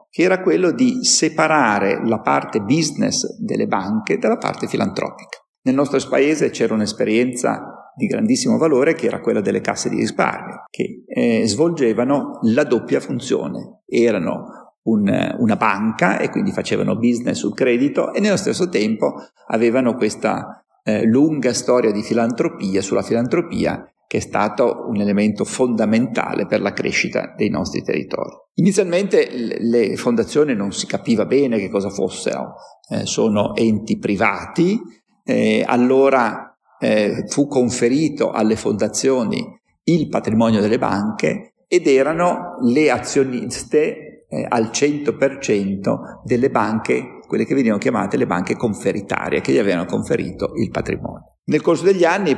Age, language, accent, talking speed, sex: 50-69, Italian, native, 135 wpm, male